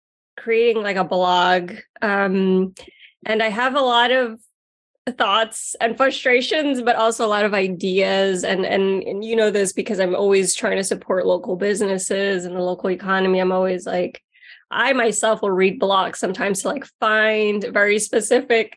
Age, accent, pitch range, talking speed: 20-39, American, 190-230 Hz, 165 wpm